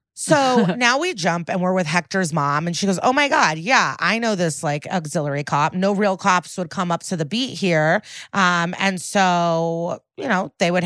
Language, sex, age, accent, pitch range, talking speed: English, female, 30-49, American, 165-200 Hz, 215 wpm